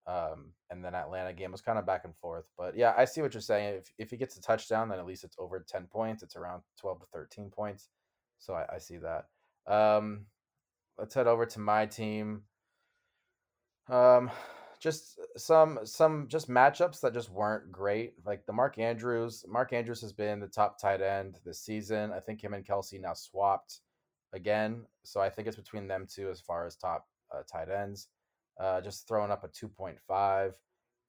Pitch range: 100-115 Hz